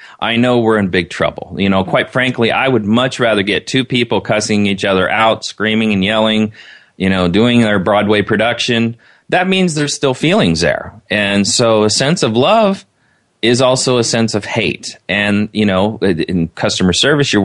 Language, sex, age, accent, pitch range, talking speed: English, male, 30-49, American, 100-125 Hz, 190 wpm